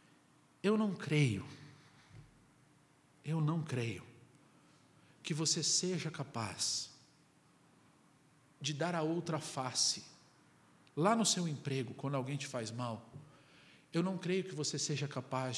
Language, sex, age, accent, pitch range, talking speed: Portuguese, male, 50-69, Brazilian, 125-155 Hz, 120 wpm